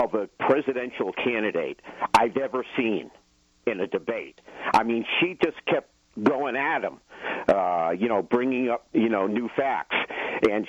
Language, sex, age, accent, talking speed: English, male, 50-69, American, 155 wpm